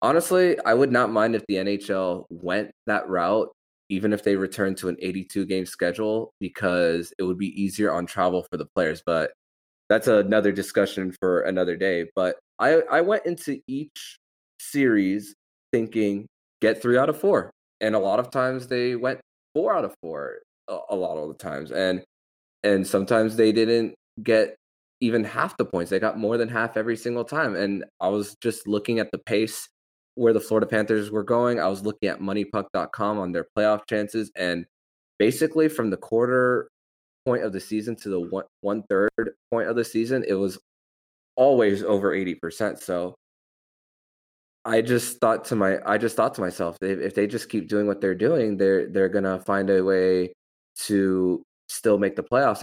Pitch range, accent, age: 95-115 Hz, American, 20-39